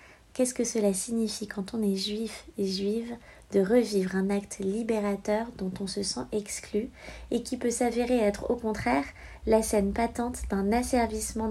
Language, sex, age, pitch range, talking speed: French, female, 20-39, 200-230 Hz, 165 wpm